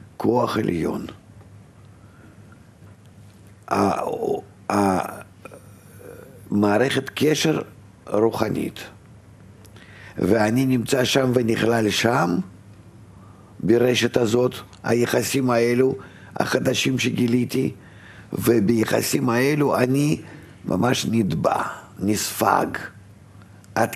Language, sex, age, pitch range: Hebrew, male, 60-79, 100-115 Hz